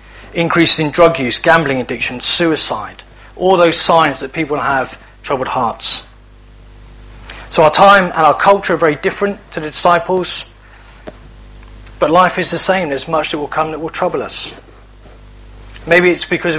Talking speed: 160 wpm